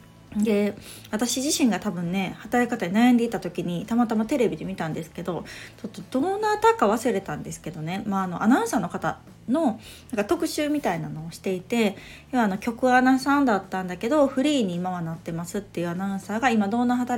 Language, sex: Japanese, female